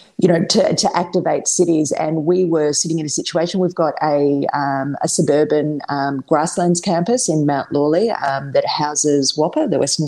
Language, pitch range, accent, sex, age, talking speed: English, 140-165 Hz, Australian, female, 30-49, 185 wpm